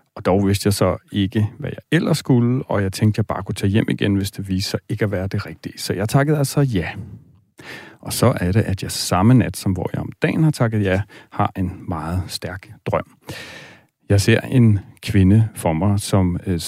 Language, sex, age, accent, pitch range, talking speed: Danish, male, 40-59, native, 95-115 Hz, 225 wpm